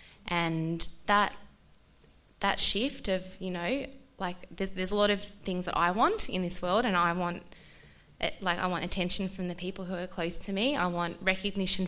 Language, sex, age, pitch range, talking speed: English, female, 20-39, 170-190 Hz, 195 wpm